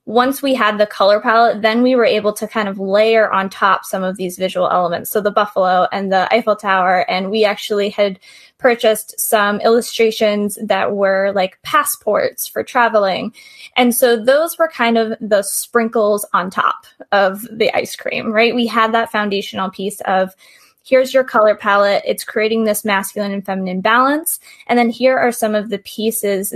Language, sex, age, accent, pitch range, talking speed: English, female, 10-29, American, 195-235 Hz, 185 wpm